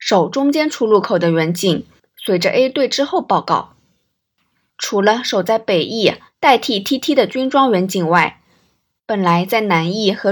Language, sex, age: Chinese, female, 20-39